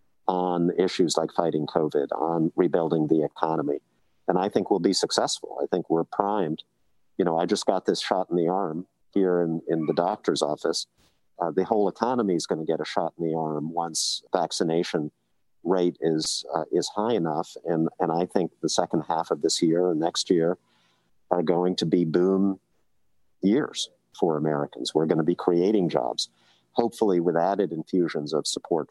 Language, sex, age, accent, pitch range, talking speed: English, male, 50-69, American, 80-90 Hz, 185 wpm